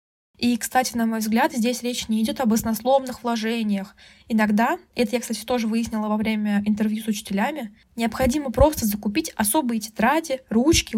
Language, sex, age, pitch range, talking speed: Russian, female, 20-39, 215-255 Hz, 160 wpm